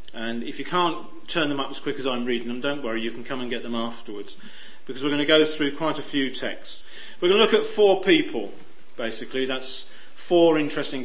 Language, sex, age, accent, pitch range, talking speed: English, male, 40-59, British, 125-150 Hz, 235 wpm